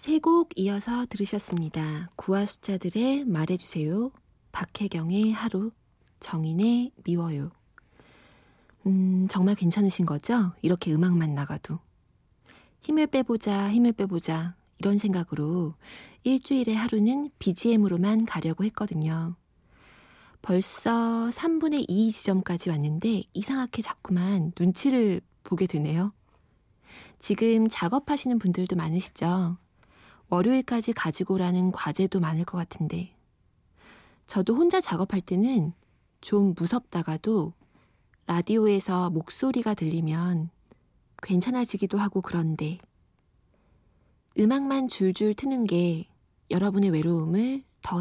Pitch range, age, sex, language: 170-225 Hz, 20-39, female, Korean